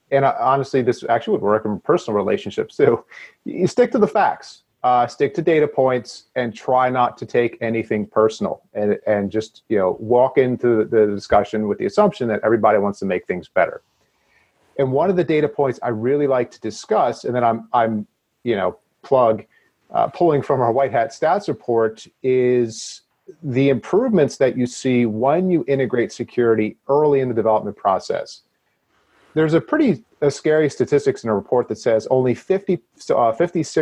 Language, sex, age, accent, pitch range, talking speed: English, male, 30-49, American, 115-155 Hz, 180 wpm